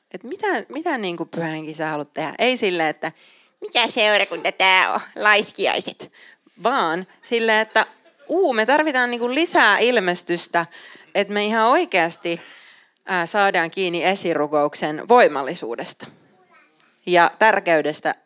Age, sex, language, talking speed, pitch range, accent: 30-49, female, Finnish, 120 wpm, 165-215 Hz, native